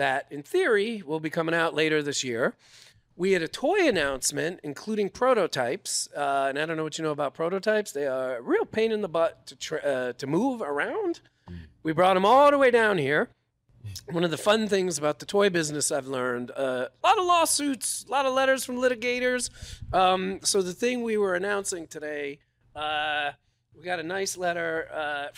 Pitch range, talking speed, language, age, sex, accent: 135-205 Hz, 205 wpm, English, 40-59, male, American